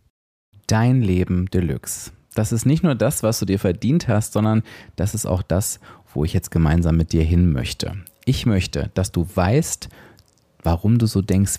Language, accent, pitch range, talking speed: German, German, 95-130 Hz, 180 wpm